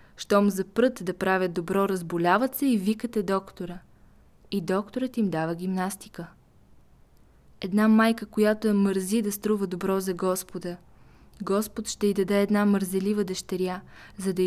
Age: 20-39